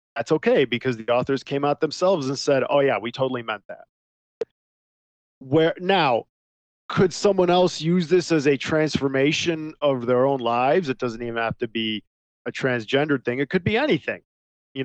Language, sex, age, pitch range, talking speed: English, male, 40-59, 120-165 Hz, 180 wpm